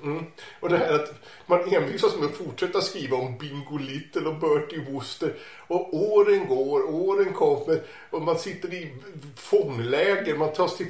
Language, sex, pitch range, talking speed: English, male, 135-200 Hz, 165 wpm